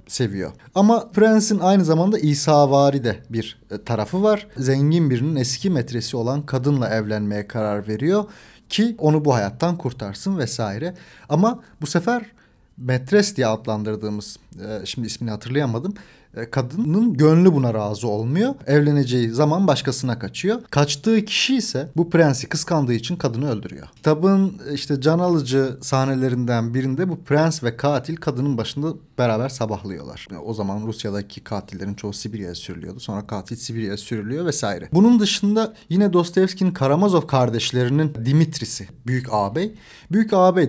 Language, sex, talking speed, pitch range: Turkish, male, 130 wpm, 115-170 Hz